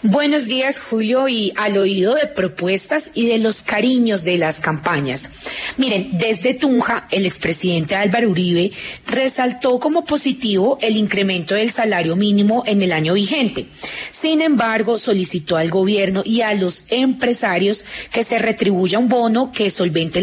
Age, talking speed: 30-49, 150 wpm